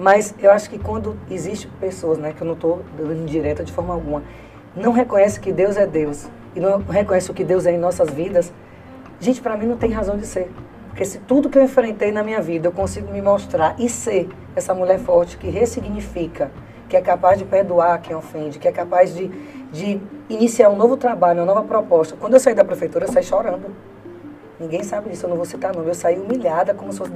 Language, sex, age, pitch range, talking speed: Portuguese, female, 20-39, 165-225 Hz, 225 wpm